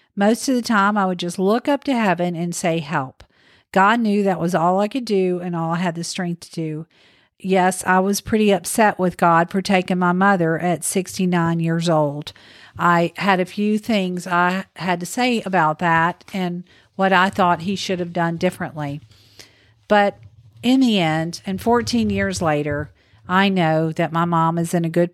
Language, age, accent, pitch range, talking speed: English, 50-69, American, 160-195 Hz, 195 wpm